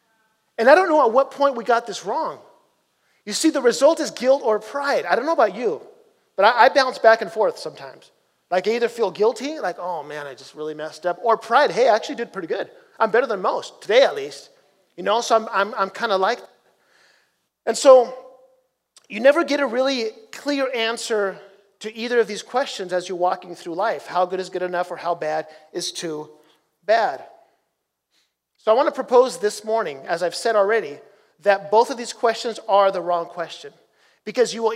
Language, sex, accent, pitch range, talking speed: English, male, American, 200-275 Hz, 210 wpm